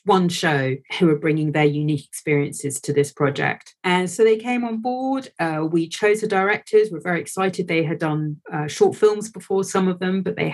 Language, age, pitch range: English, 40-59, 155-185 Hz